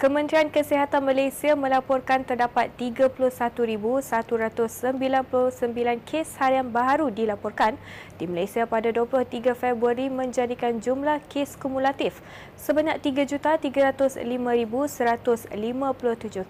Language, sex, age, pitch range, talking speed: Malay, female, 20-39, 235-280 Hz, 75 wpm